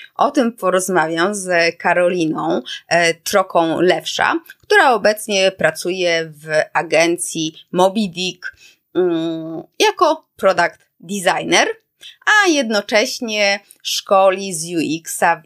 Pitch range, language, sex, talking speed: 170-195 Hz, Polish, female, 80 wpm